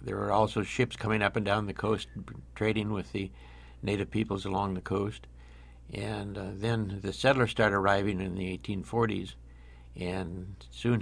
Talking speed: 165 wpm